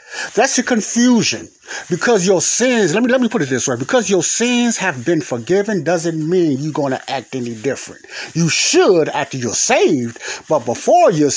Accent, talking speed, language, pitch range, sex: American, 185 wpm, English, 140-205 Hz, male